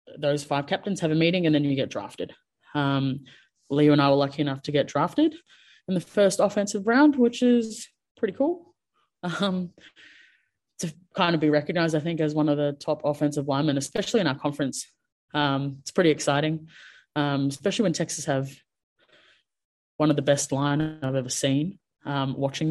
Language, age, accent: English, 20-39, Australian